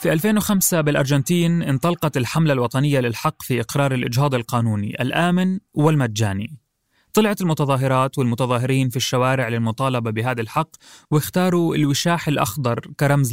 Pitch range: 125-160 Hz